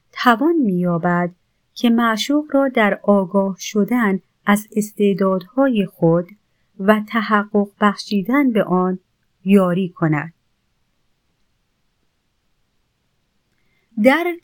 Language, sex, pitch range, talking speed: Persian, female, 185-250 Hz, 80 wpm